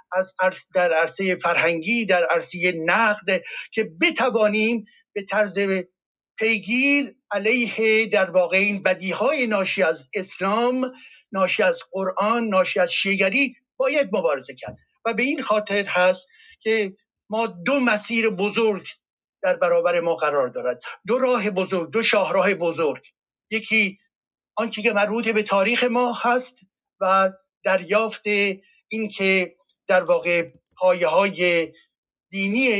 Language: Persian